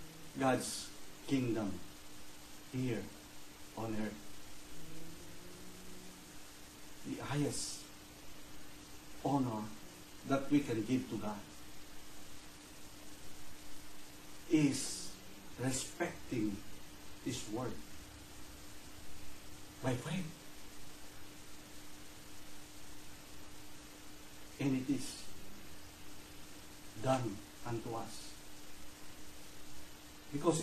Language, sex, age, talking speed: Filipino, male, 60-79, 55 wpm